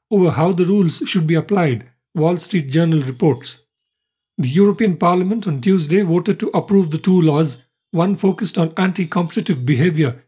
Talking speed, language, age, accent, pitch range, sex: 160 wpm, English, 50-69, Indian, 155-185 Hz, male